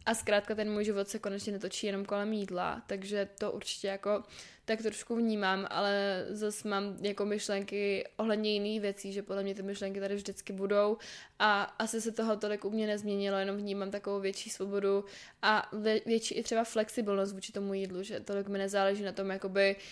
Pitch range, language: 195-210 Hz, Czech